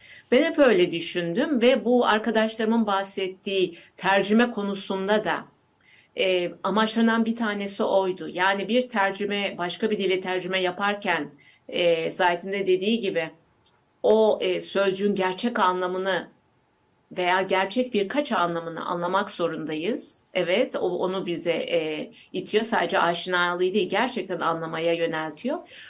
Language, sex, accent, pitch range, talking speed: Turkish, female, native, 185-230 Hz, 120 wpm